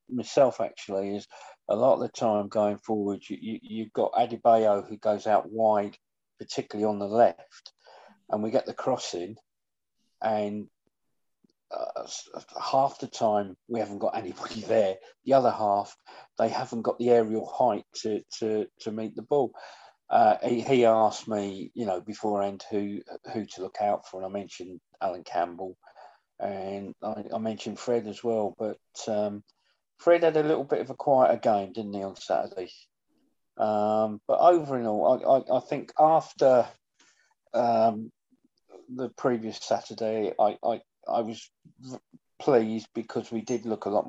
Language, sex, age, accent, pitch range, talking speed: English, male, 40-59, British, 100-115 Hz, 160 wpm